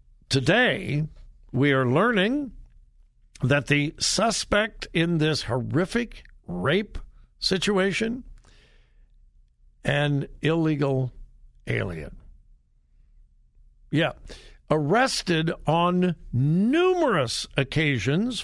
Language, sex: English, male